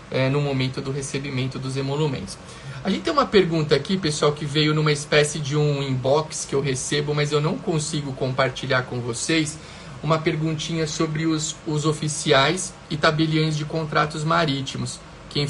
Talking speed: 165 wpm